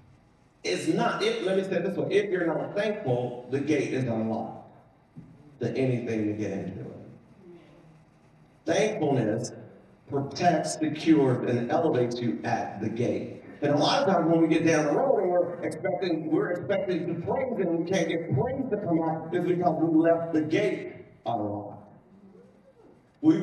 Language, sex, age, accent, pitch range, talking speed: English, male, 50-69, American, 125-175 Hz, 165 wpm